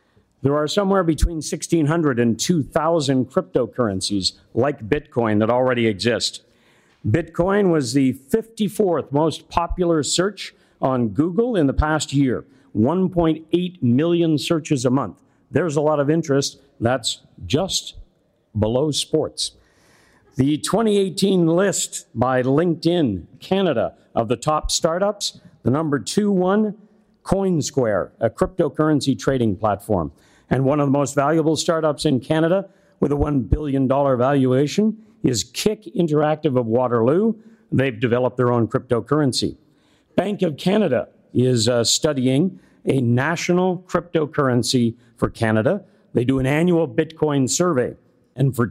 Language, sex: English, male